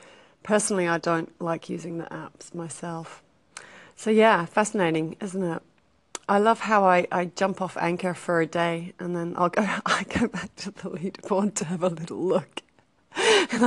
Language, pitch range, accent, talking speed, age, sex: English, 175-240 Hz, British, 180 wpm, 30-49, female